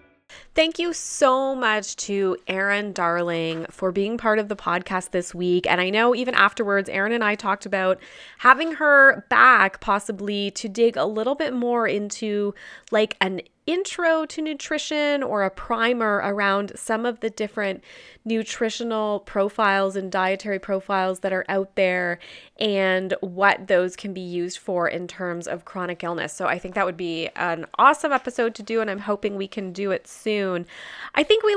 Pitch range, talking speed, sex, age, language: 185-225 Hz, 175 wpm, female, 20-39, English